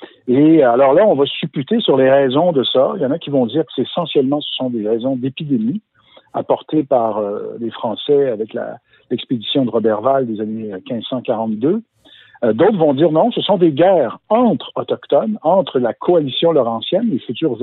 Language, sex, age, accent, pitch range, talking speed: French, male, 50-69, French, 120-185 Hz, 190 wpm